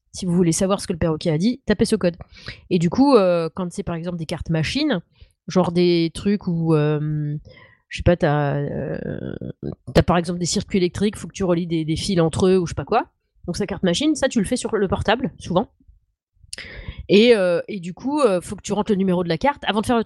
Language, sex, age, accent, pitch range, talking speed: French, female, 30-49, French, 170-210 Hz, 255 wpm